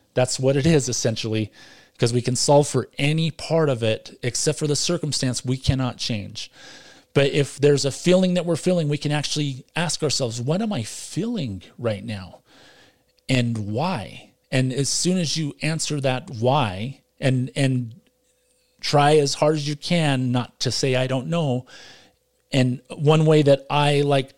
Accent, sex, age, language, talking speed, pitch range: American, male, 40-59, English, 170 wpm, 120-150 Hz